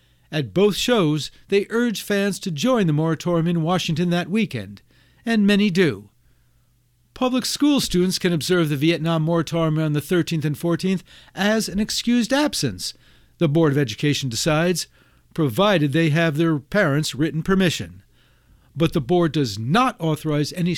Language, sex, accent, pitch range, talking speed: English, male, American, 150-210 Hz, 155 wpm